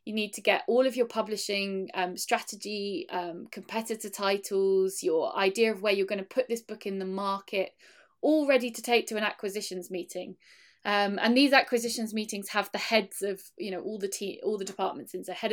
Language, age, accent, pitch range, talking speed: English, 20-39, British, 195-230 Hz, 205 wpm